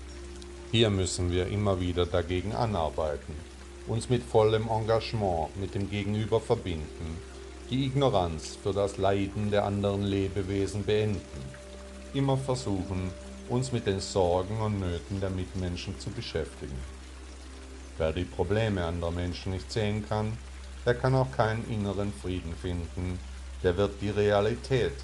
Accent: German